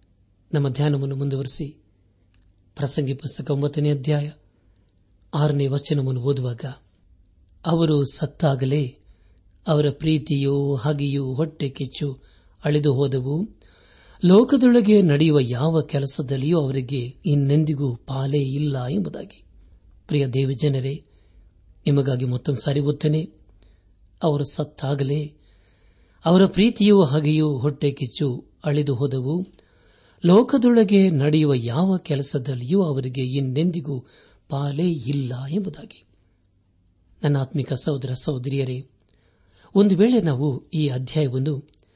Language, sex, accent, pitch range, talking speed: Kannada, male, native, 125-155 Hz, 85 wpm